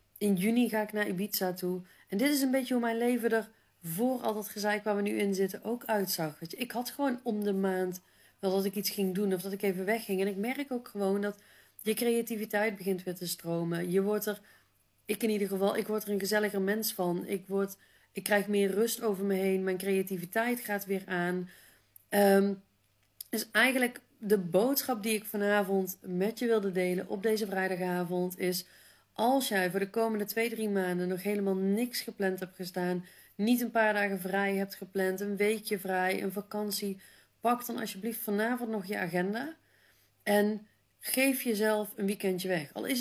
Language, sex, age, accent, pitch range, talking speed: Dutch, female, 40-59, Dutch, 190-220 Hz, 195 wpm